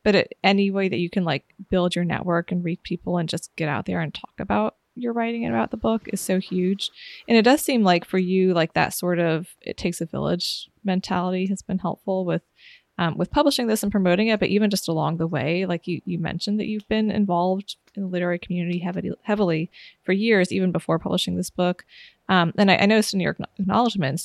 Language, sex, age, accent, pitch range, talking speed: English, female, 20-39, American, 175-205 Hz, 230 wpm